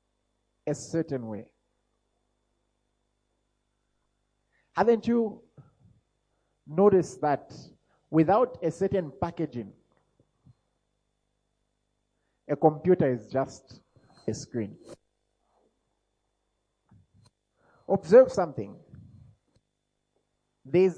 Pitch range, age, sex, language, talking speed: 120-160 Hz, 50-69, male, English, 55 wpm